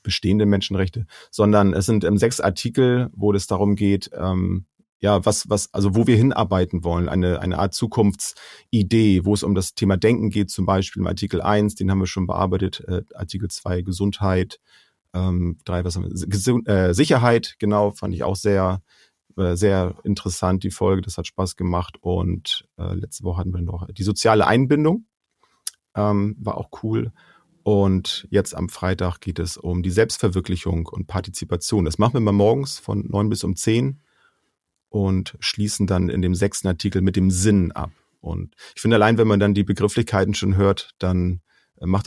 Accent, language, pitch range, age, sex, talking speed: German, German, 90-105 Hz, 30-49, male, 180 wpm